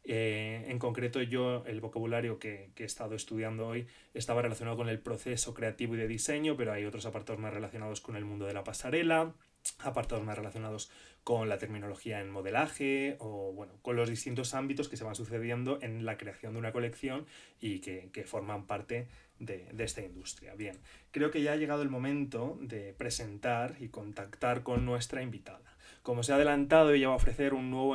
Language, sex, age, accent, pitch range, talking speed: Spanish, male, 20-39, Spanish, 110-135 Hz, 195 wpm